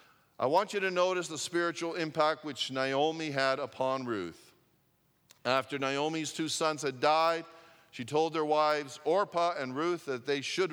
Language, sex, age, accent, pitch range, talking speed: English, male, 50-69, American, 130-170 Hz, 160 wpm